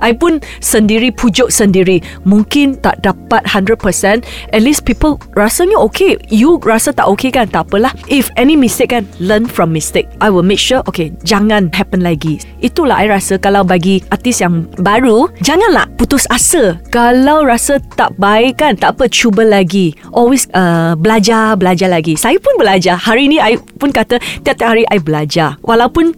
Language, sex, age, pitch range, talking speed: Malay, female, 20-39, 195-270 Hz, 170 wpm